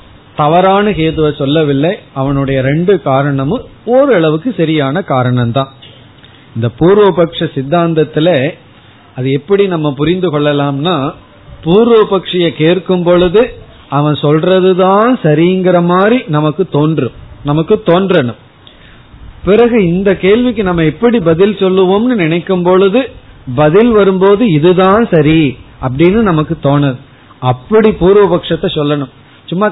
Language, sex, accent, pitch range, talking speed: Tamil, male, native, 135-185 Hz, 95 wpm